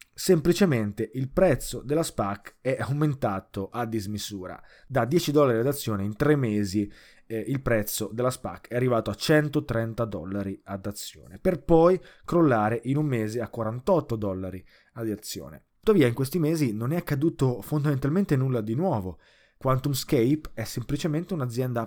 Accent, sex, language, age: native, male, Italian, 20-39